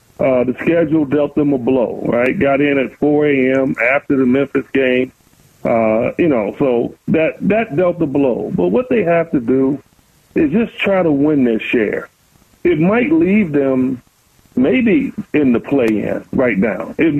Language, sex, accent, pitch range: English, male, American, 135-195 Hz